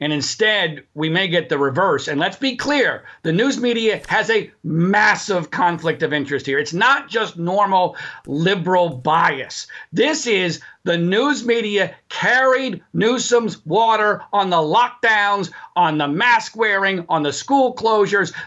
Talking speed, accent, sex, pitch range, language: 150 wpm, American, male, 170-250 Hz, English